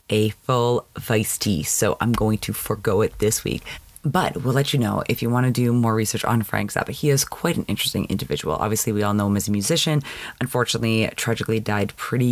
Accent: American